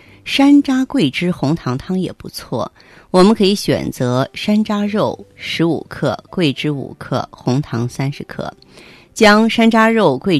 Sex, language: female, Chinese